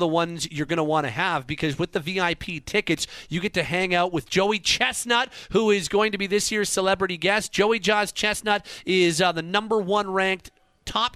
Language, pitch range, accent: English, 160-205 Hz, American